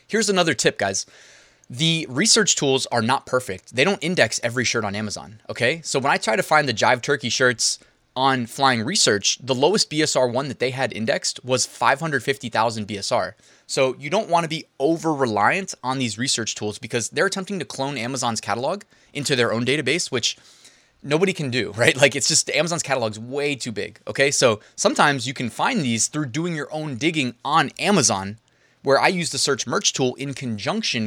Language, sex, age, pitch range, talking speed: English, male, 20-39, 120-155 Hz, 195 wpm